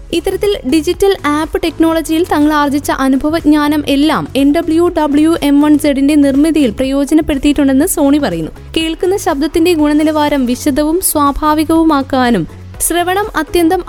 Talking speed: 110 wpm